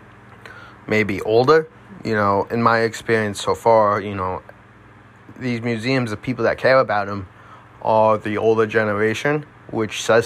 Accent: American